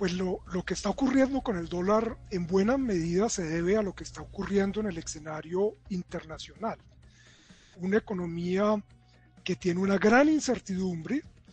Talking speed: 155 wpm